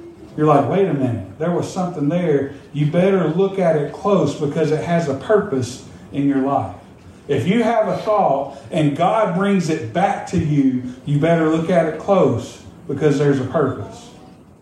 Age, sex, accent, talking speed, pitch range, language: 50-69, male, American, 185 wpm, 135-170 Hz, English